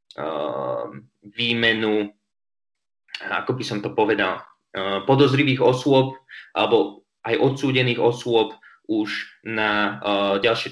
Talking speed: 85 wpm